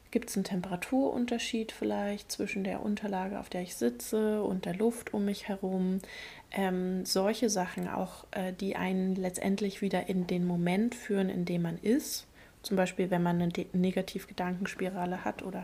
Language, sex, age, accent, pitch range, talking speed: German, female, 20-39, German, 185-210 Hz, 170 wpm